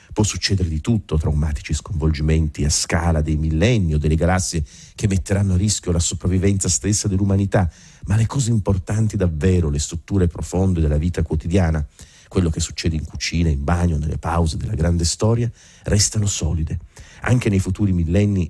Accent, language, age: native, Italian, 40-59